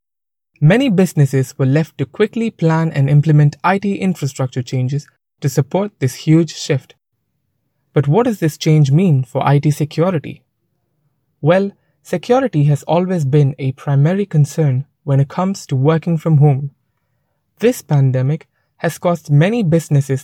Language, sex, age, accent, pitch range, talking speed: English, male, 20-39, Indian, 135-170 Hz, 140 wpm